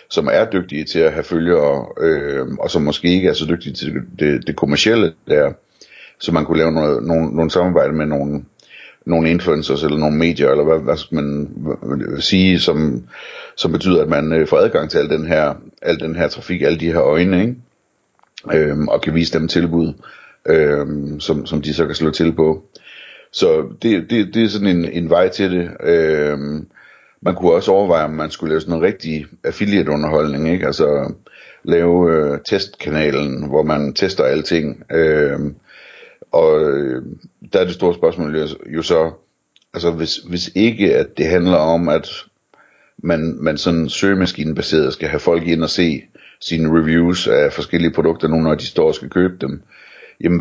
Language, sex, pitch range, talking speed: Danish, male, 80-100 Hz, 185 wpm